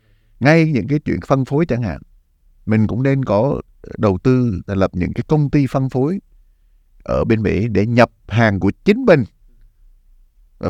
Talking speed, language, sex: 180 wpm, Vietnamese, male